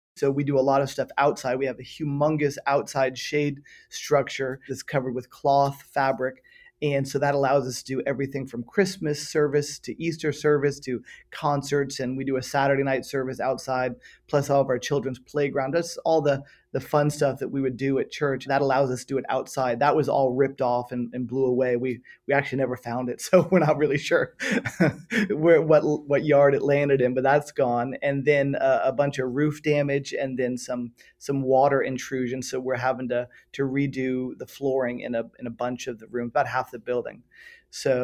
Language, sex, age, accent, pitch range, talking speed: English, male, 30-49, American, 130-145 Hz, 210 wpm